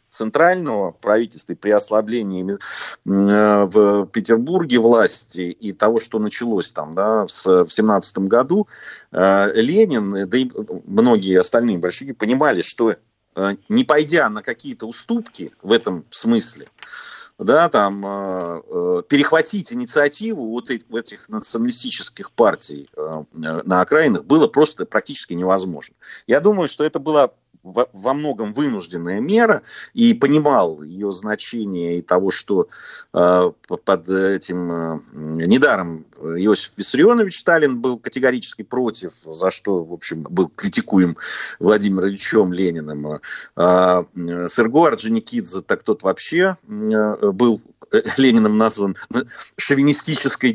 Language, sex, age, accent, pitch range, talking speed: Russian, male, 30-49, native, 95-145 Hz, 115 wpm